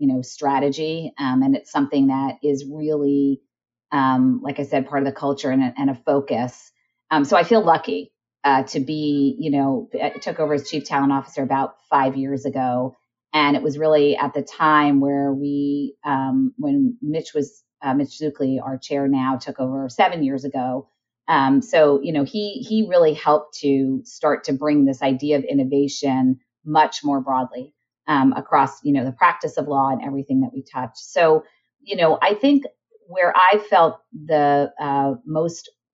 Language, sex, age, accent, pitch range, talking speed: English, female, 30-49, American, 140-160 Hz, 185 wpm